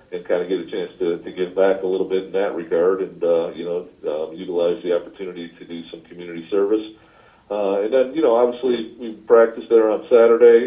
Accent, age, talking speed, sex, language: American, 40-59, 225 wpm, male, English